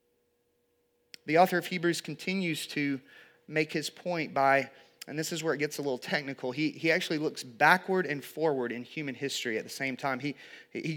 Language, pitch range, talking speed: English, 130-165 Hz, 190 wpm